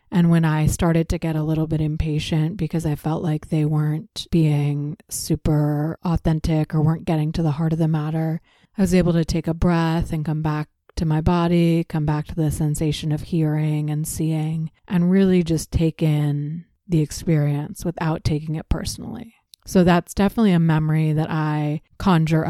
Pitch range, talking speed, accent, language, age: 155-175 Hz, 185 wpm, American, English, 30-49